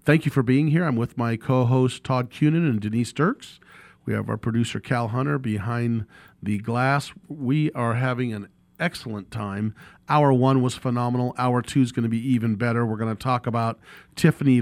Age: 40-59